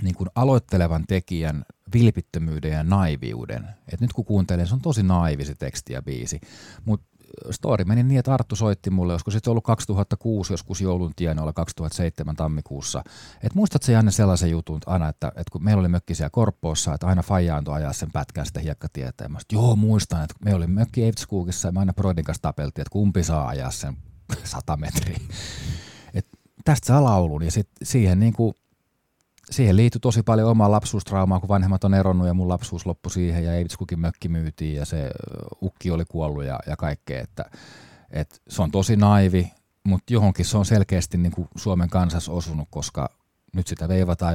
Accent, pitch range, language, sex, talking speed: native, 80-105 Hz, Finnish, male, 180 wpm